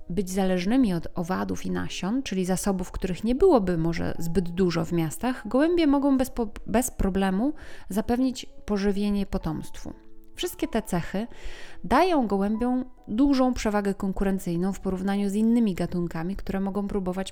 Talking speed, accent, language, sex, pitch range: 140 wpm, native, Polish, female, 180-230 Hz